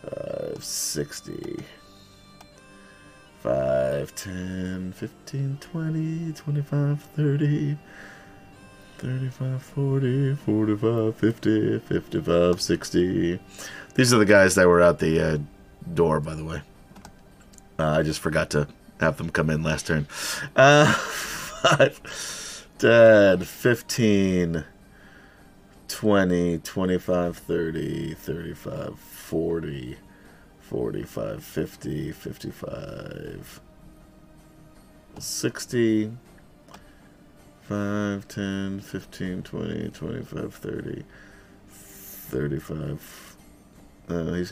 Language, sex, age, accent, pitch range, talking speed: English, male, 30-49, American, 90-120 Hz, 80 wpm